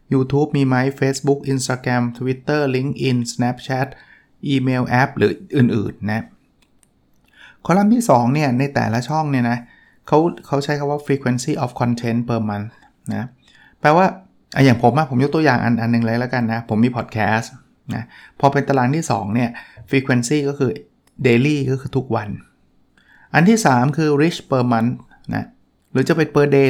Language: Thai